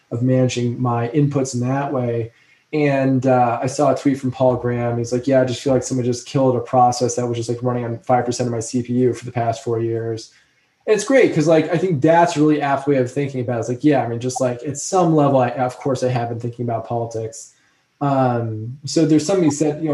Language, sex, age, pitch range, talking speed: English, male, 20-39, 125-150 Hz, 255 wpm